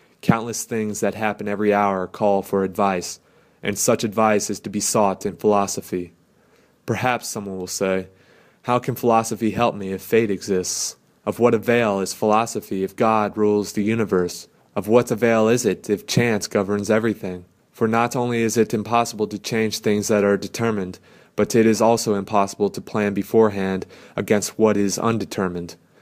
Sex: male